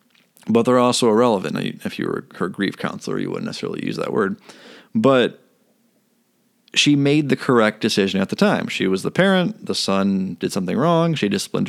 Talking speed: 185 wpm